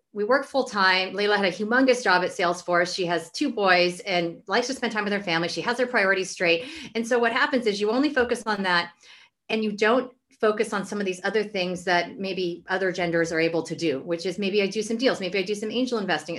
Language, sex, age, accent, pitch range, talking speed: English, female, 30-49, American, 175-215 Hz, 250 wpm